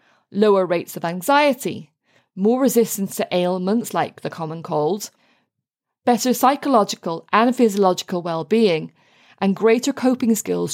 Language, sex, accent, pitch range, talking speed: English, female, British, 175-235 Hz, 115 wpm